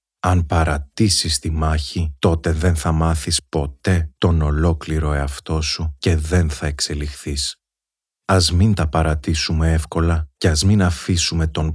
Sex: male